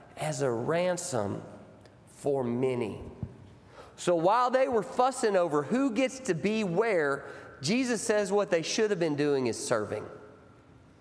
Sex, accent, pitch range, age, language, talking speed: male, American, 155-250 Hz, 40-59, English, 140 wpm